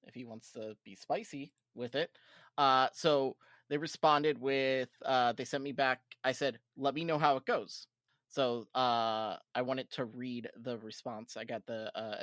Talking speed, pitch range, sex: 185 wpm, 120-140 Hz, male